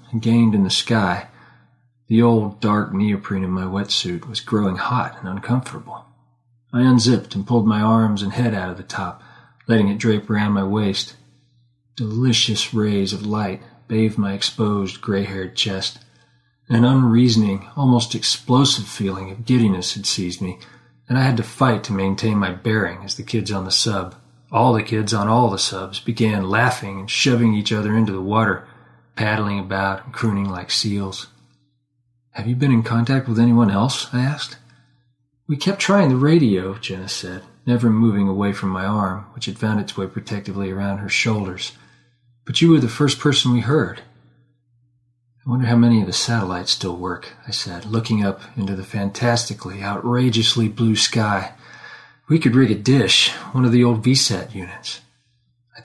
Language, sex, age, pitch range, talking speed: English, male, 40-59, 100-125 Hz, 175 wpm